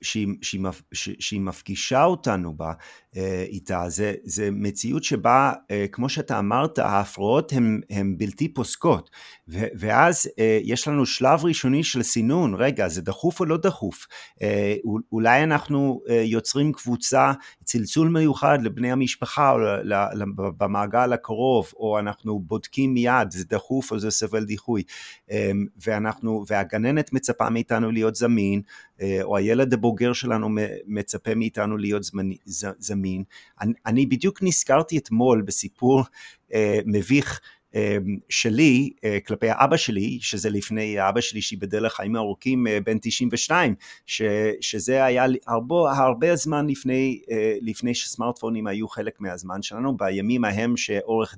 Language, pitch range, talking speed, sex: Hebrew, 100-125 Hz, 120 wpm, male